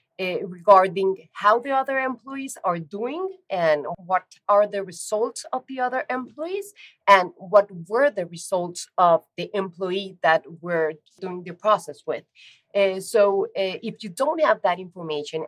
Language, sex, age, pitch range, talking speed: English, female, 30-49, 175-220 Hz, 155 wpm